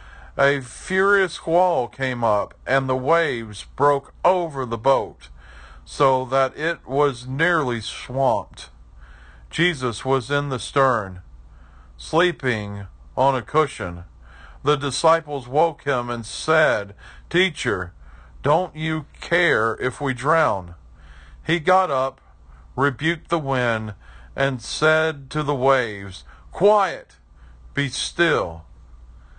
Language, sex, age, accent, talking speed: English, male, 50-69, American, 110 wpm